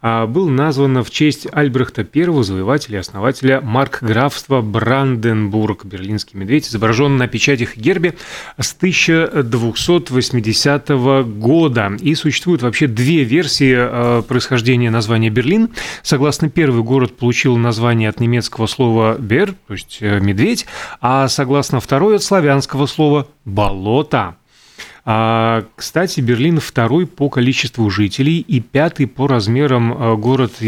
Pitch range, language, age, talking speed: 115-150 Hz, Russian, 30-49, 115 wpm